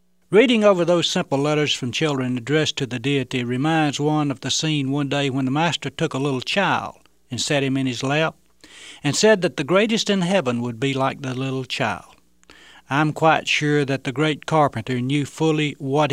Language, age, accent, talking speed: English, 60-79, American, 200 wpm